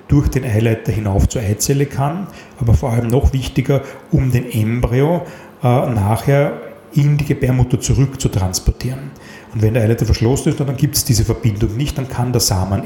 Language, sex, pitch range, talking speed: German, male, 110-135 Hz, 175 wpm